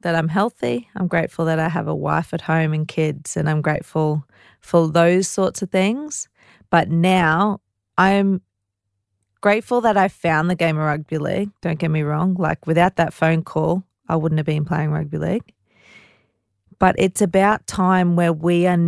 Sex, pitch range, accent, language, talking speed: female, 155-185 Hz, Australian, English, 180 wpm